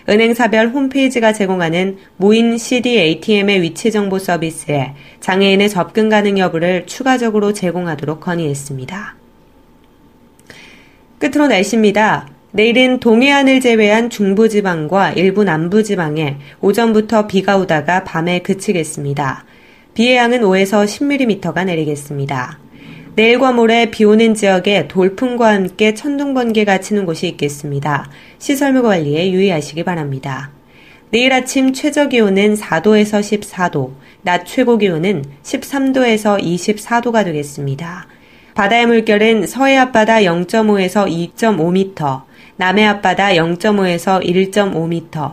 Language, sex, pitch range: Korean, female, 170-225 Hz